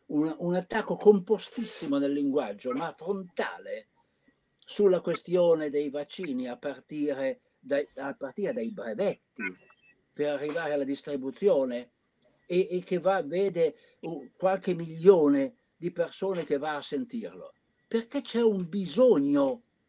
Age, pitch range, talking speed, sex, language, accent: 60-79, 155-235 Hz, 120 wpm, male, Italian, native